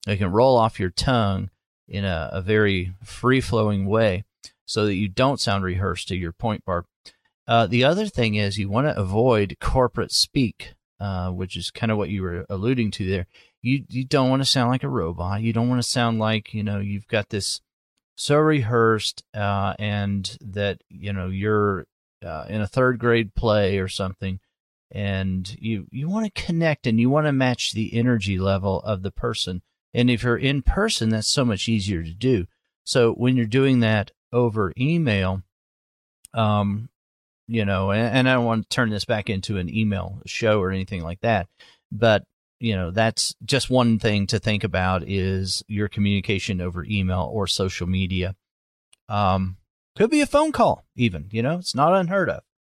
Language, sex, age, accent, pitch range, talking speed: English, male, 40-59, American, 95-120 Hz, 190 wpm